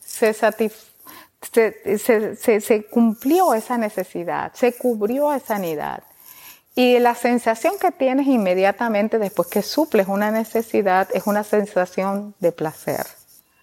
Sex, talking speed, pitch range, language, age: female, 115 wpm, 190-230 Hz, Spanish, 30-49